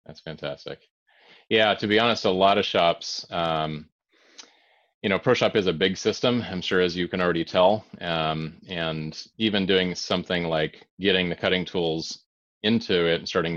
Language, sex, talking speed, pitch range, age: English, male, 175 wpm, 80-95 Hz, 30-49